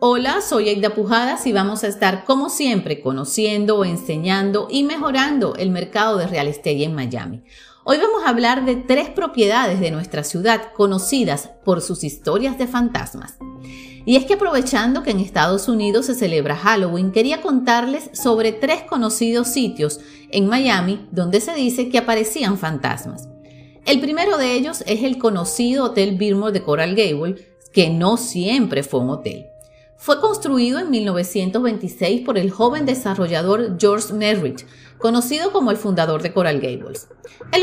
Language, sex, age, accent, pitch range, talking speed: Spanish, female, 40-59, American, 180-245 Hz, 155 wpm